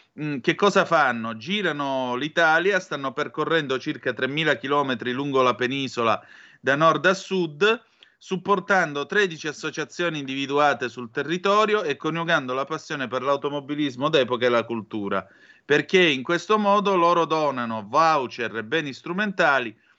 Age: 30-49